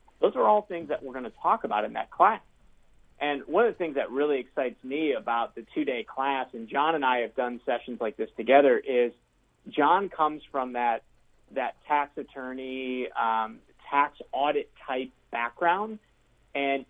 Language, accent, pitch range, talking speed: English, American, 120-145 Hz, 180 wpm